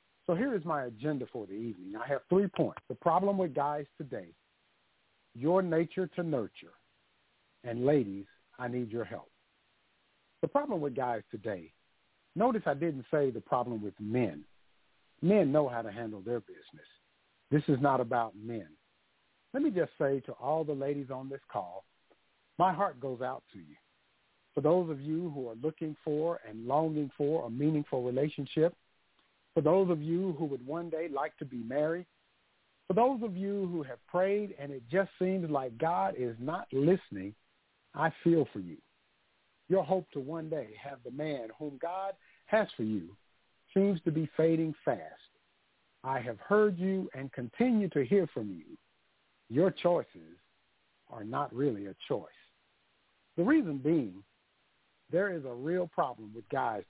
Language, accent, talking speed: English, American, 170 wpm